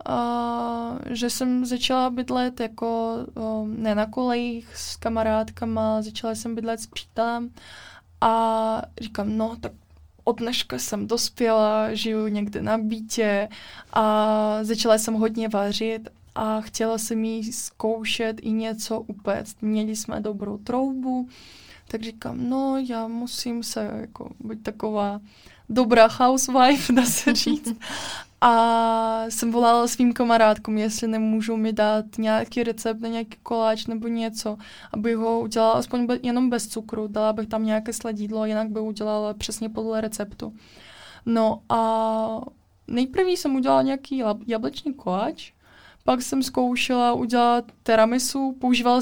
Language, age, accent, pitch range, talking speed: Czech, 20-39, native, 220-240 Hz, 130 wpm